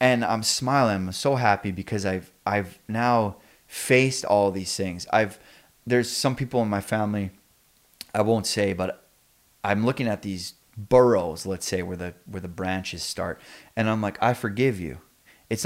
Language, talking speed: English, 175 wpm